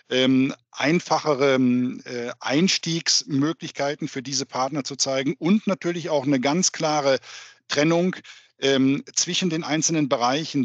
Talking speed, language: 120 wpm, German